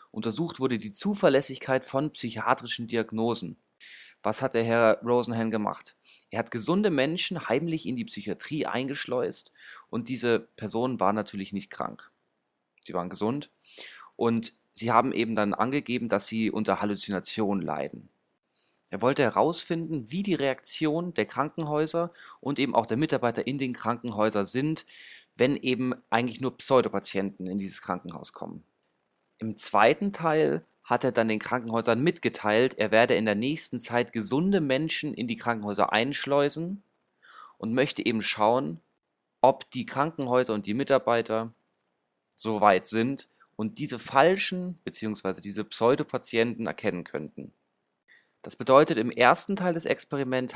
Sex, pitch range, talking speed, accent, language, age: male, 110-135 Hz, 140 wpm, German, German, 30-49